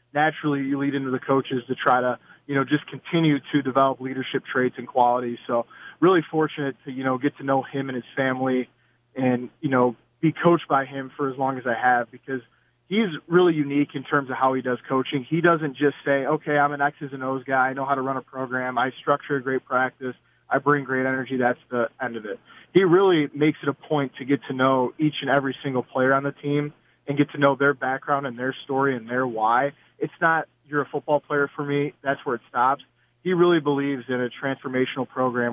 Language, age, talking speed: English, 20-39, 230 wpm